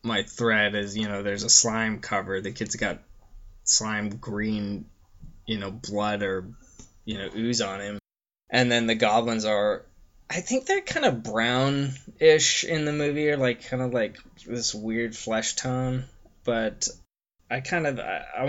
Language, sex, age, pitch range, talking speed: English, male, 20-39, 100-120 Hz, 165 wpm